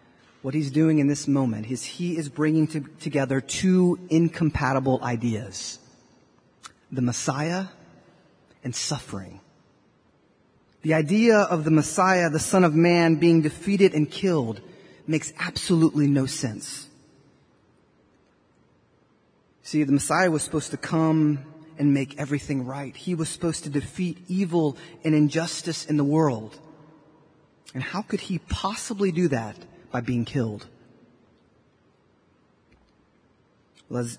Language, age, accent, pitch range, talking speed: English, 30-49, American, 130-160 Hz, 120 wpm